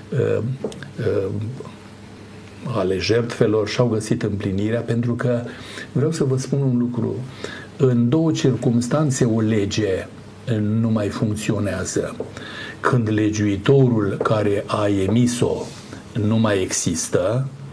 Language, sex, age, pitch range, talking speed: Romanian, male, 60-79, 105-135 Hz, 100 wpm